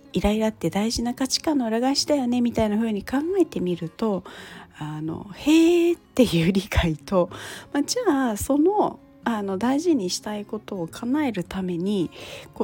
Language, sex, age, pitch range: Japanese, female, 40-59, 180-270 Hz